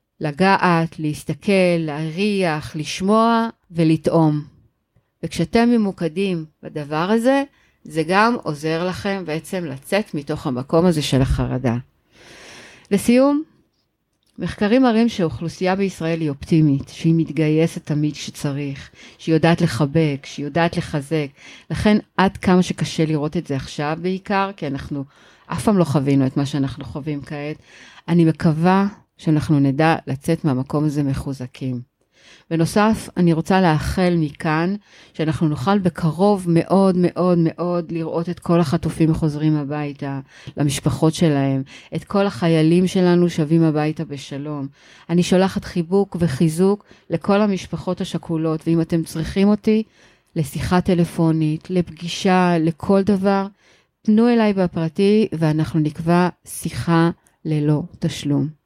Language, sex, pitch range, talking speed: Hebrew, female, 150-185 Hz, 120 wpm